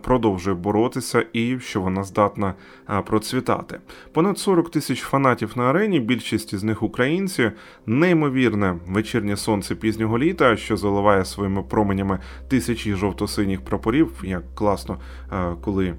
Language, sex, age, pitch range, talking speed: Ukrainian, male, 20-39, 95-120 Hz, 120 wpm